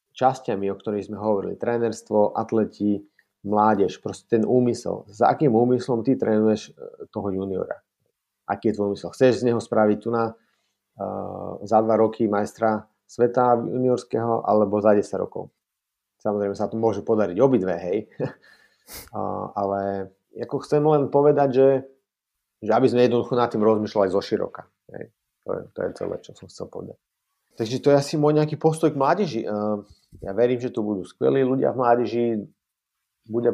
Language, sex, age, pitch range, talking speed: Slovak, male, 30-49, 105-125 Hz, 165 wpm